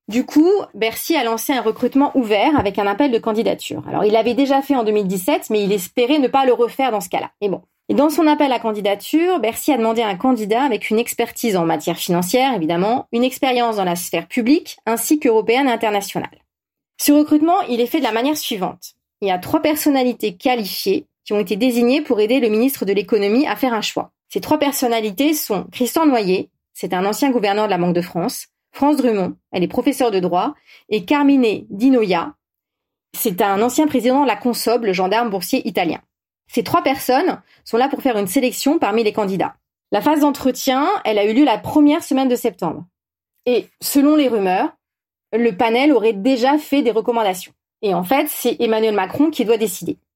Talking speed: 200 wpm